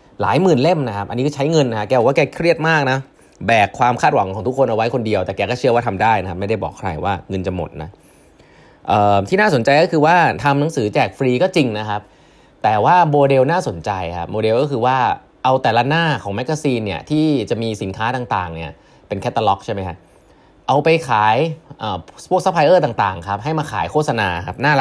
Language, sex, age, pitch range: Thai, male, 20-39, 100-145 Hz